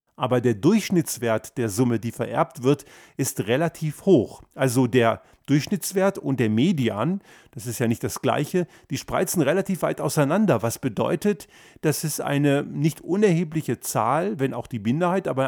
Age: 40-59